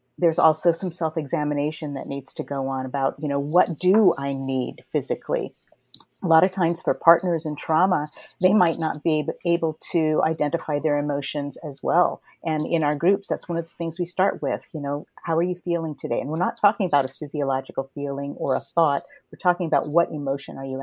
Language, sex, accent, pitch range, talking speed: English, female, American, 140-165 Hz, 210 wpm